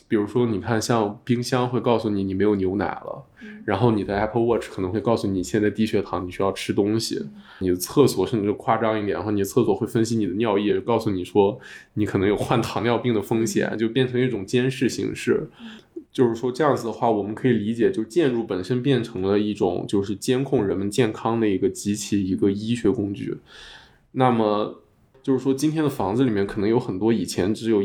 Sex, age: male, 20-39